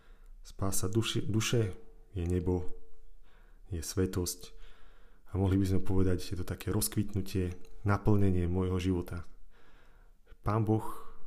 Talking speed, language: 110 wpm, Slovak